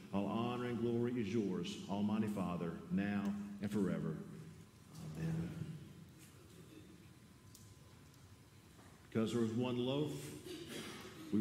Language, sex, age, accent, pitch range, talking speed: English, male, 50-69, American, 100-115 Hz, 95 wpm